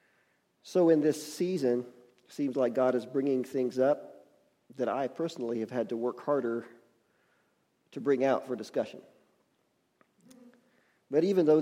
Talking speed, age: 145 wpm, 40-59